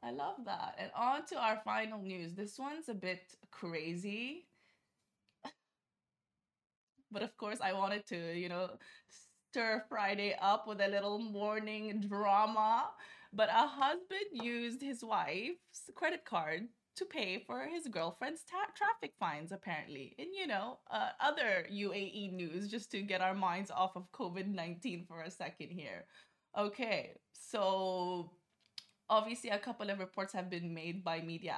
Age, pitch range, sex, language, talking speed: 20-39, 180-220 Hz, female, Arabic, 145 wpm